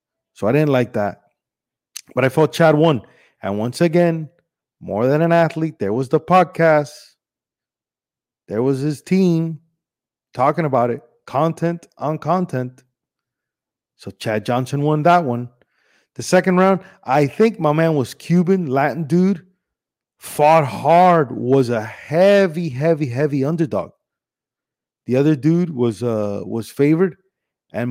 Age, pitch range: 30-49, 120-165 Hz